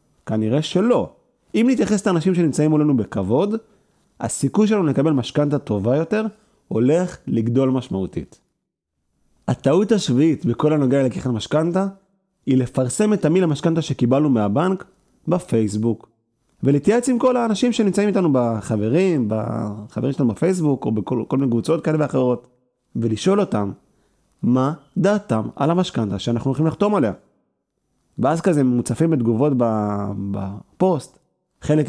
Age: 30-49